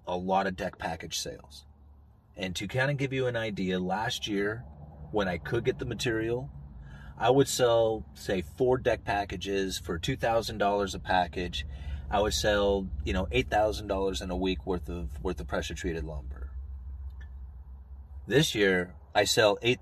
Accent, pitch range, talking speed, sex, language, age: American, 75-100 Hz, 155 wpm, male, English, 30-49